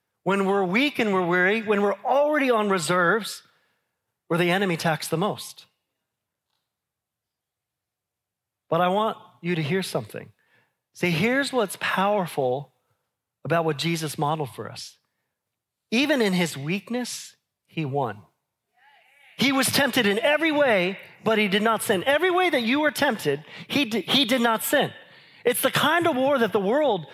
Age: 40-59